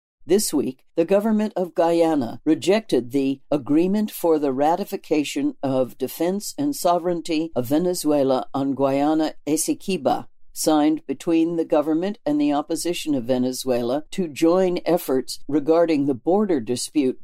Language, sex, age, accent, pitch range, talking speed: English, female, 60-79, American, 140-185 Hz, 125 wpm